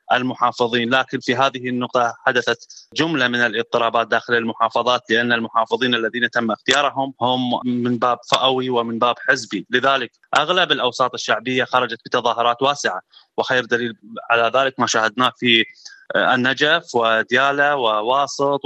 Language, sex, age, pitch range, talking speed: Arabic, male, 20-39, 125-135 Hz, 130 wpm